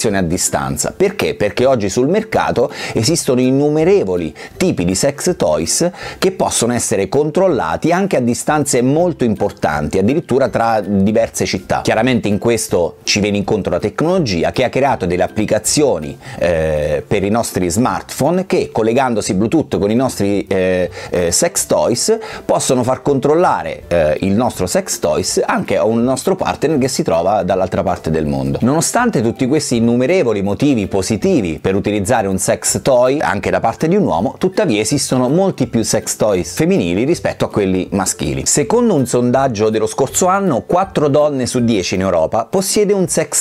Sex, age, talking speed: male, 30-49, 160 wpm